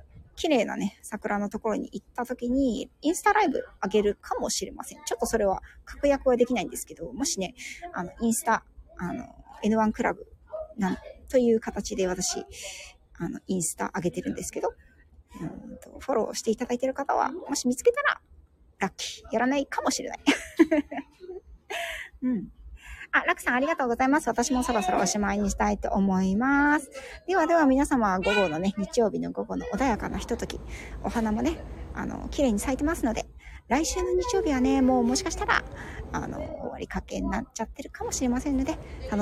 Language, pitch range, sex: Japanese, 205-285 Hz, female